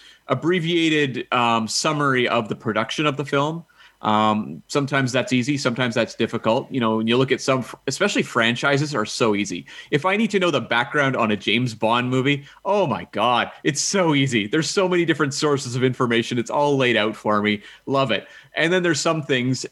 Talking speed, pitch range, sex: 200 wpm, 115-145 Hz, male